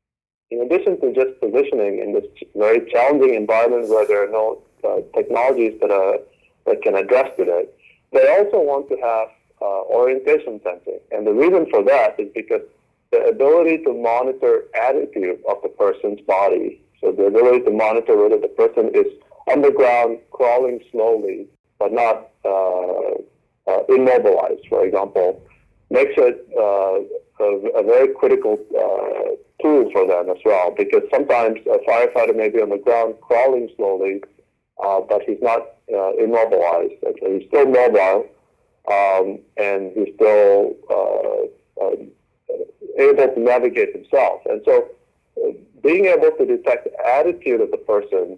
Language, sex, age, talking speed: English, male, 40-59, 150 wpm